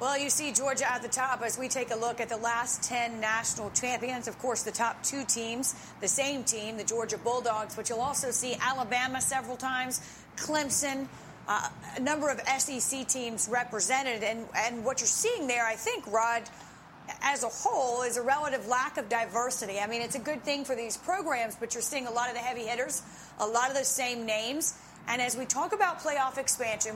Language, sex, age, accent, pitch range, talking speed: English, female, 30-49, American, 230-265 Hz, 210 wpm